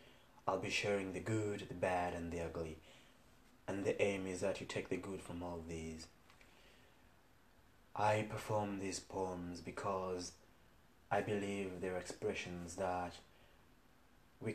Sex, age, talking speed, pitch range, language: male, 20-39, 135 wpm, 90-100 Hz, English